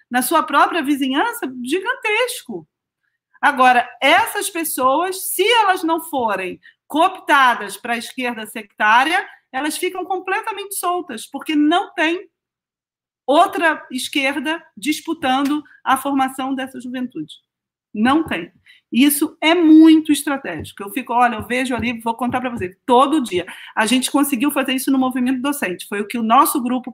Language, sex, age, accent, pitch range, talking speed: Portuguese, female, 40-59, Brazilian, 230-315 Hz, 140 wpm